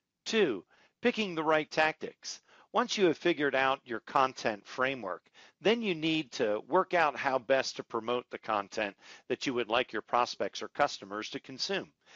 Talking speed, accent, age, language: 175 wpm, American, 50-69, English